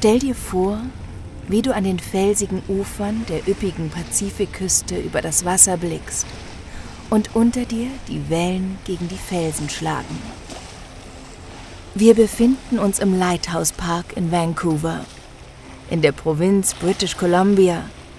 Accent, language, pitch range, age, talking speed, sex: German, English, 150-205 Hz, 40-59, 125 wpm, female